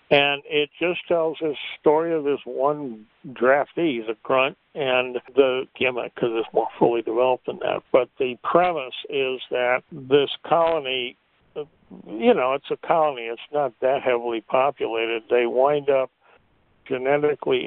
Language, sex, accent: English, male, American